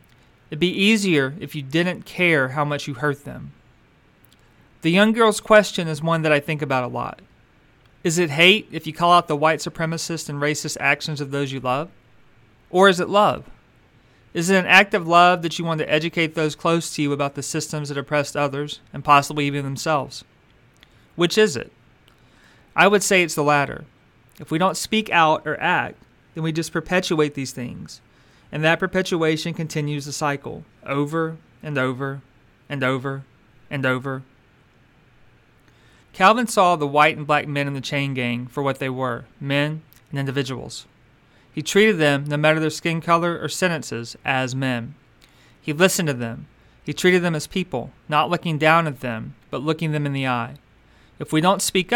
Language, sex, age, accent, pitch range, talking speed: English, male, 40-59, American, 135-165 Hz, 185 wpm